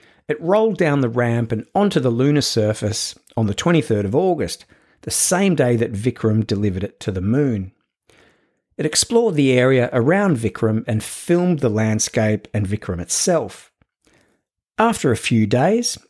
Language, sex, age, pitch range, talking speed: English, male, 50-69, 105-145 Hz, 155 wpm